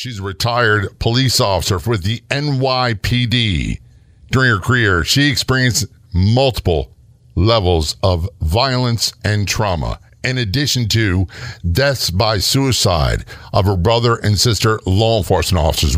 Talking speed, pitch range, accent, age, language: 125 wpm, 95-125 Hz, American, 50-69, English